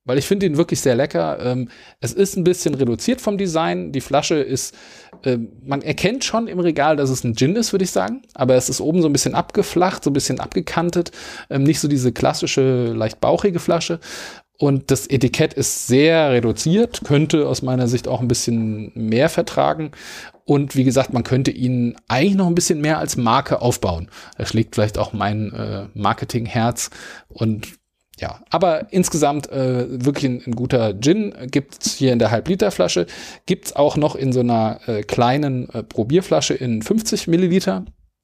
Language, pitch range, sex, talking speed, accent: German, 115-165 Hz, male, 180 wpm, German